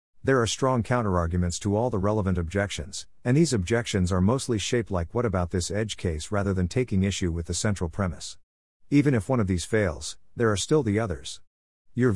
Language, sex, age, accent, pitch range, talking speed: English, male, 50-69, American, 90-115 Hz, 200 wpm